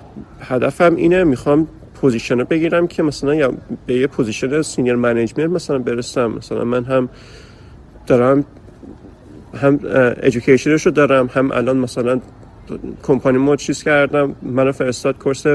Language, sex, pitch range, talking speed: Persian, male, 125-160 Hz, 130 wpm